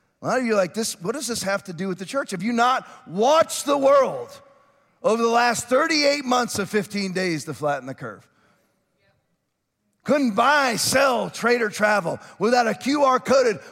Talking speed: 190 wpm